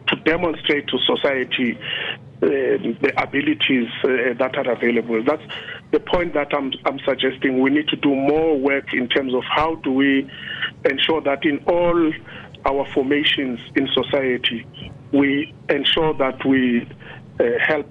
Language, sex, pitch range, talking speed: English, male, 135-170 Hz, 145 wpm